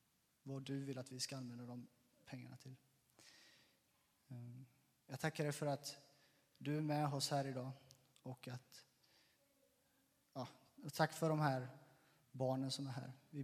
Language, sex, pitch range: Swedish, male, 130-155 Hz